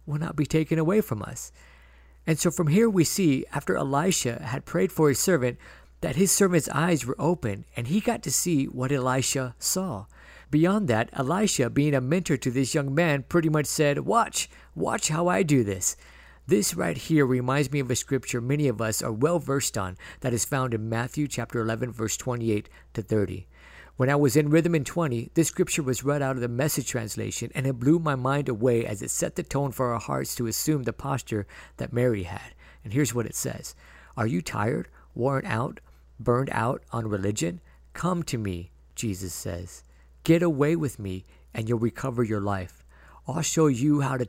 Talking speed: 200 wpm